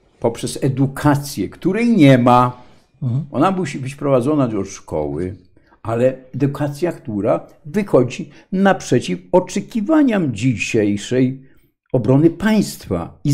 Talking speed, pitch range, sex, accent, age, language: 95 wpm, 115-160 Hz, male, native, 50-69, Polish